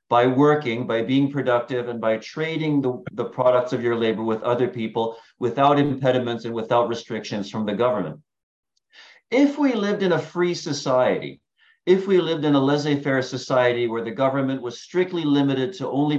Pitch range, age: 125-150 Hz, 50-69